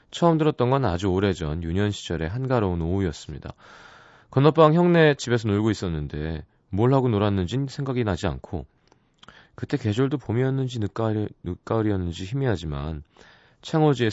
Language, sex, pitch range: Korean, male, 90-130 Hz